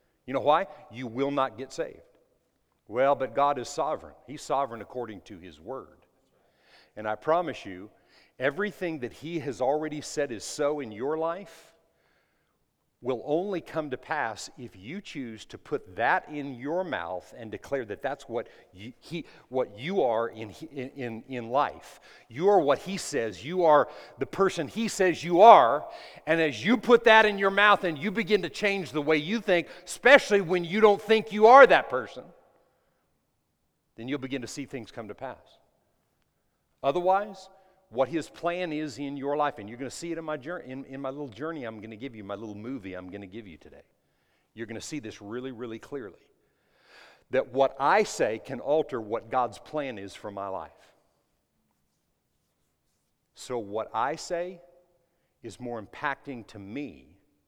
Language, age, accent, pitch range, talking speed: English, 50-69, American, 115-175 Hz, 185 wpm